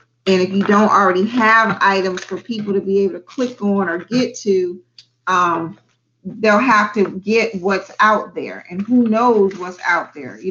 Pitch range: 180-225 Hz